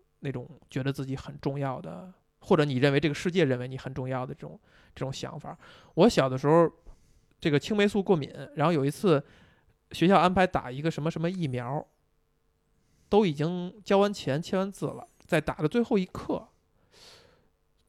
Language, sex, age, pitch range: Chinese, male, 20-39, 135-190 Hz